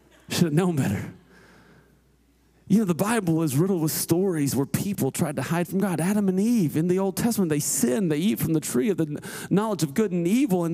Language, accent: English, American